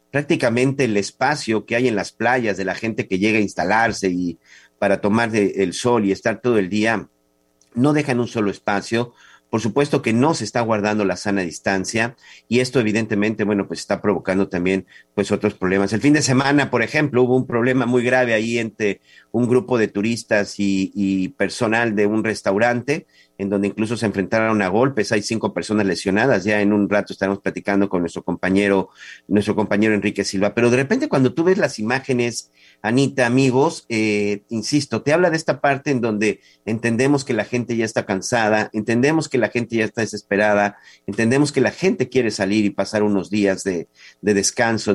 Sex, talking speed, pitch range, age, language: male, 195 wpm, 100-120 Hz, 50-69, Spanish